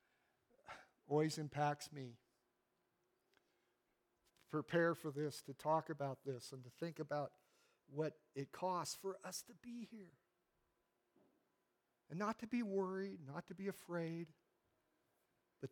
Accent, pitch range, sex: American, 140-175 Hz, male